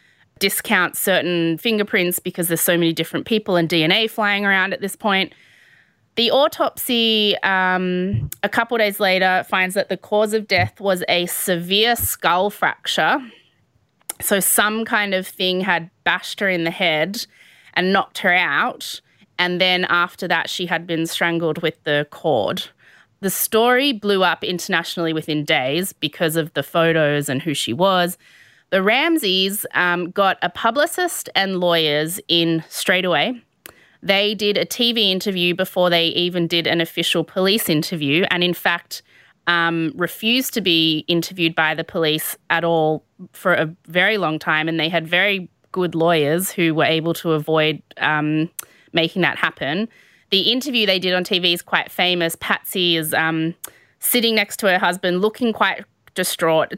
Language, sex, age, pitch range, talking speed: English, female, 20-39, 165-200 Hz, 160 wpm